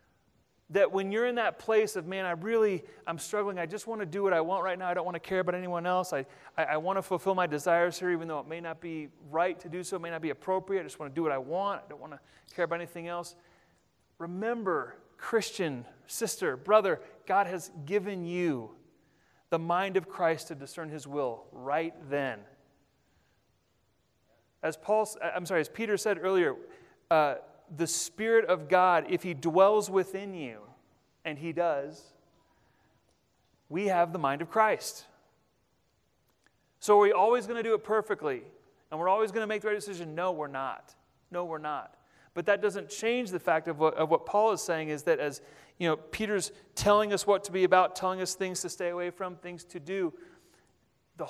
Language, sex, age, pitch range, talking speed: English, male, 30-49, 165-205 Hz, 205 wpm